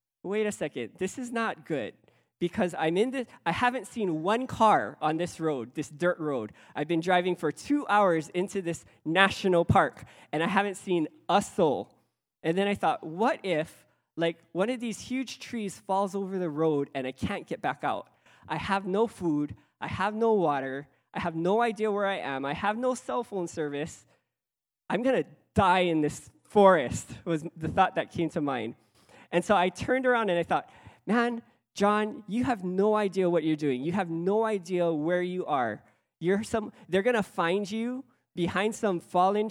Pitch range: 165-210 Hz